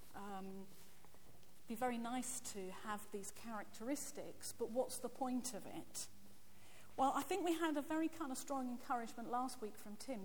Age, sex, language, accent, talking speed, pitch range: 40-59, female, English, British, 170 wpm, 200-255 Hz